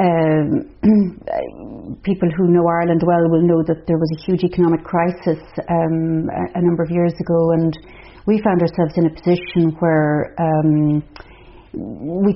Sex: female